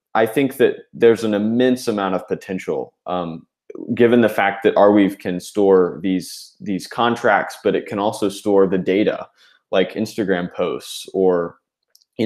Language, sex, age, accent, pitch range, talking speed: English, male, 20-39, American, 95-115 Hz, 155 wpm